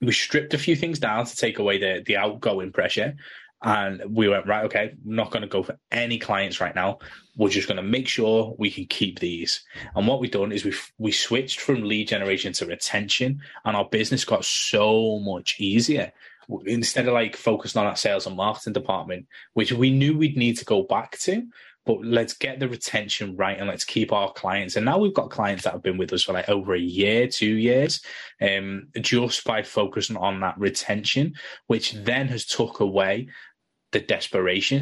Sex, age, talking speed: male, 10-29, 200 wpm